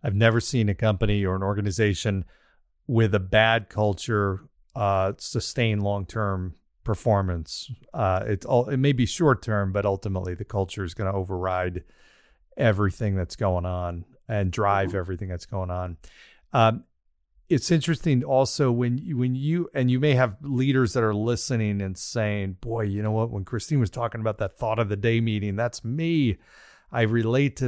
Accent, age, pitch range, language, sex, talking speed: American, 40-59, 100-120 Hz, English, male, 170 wpm